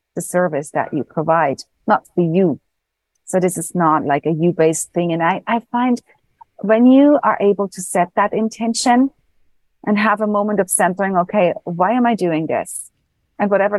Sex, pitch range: female, 165-220 Hz